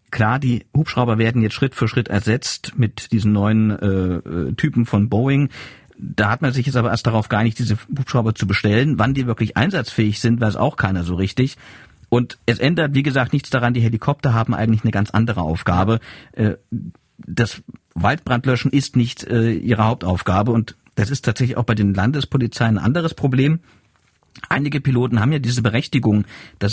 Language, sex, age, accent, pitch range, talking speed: German, male, 50-69, German, 105-125 Hz, 175 wpm